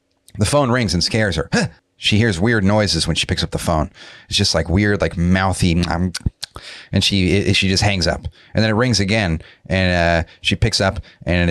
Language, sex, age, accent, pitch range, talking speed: English, male, 30-49, American, 90-110 Hz, 220 wpm